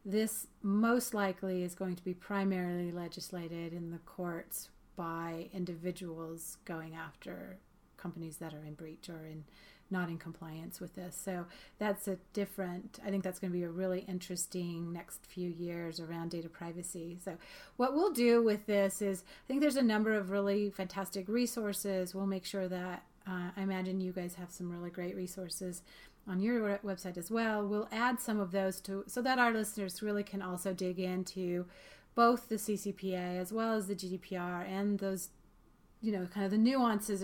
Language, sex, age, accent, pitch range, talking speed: English, female, 30-49, American, 180-205 Hz, 180 wpm